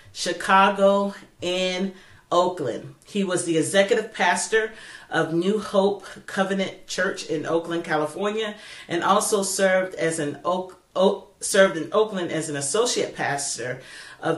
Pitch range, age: 155-190 Hz, 40-59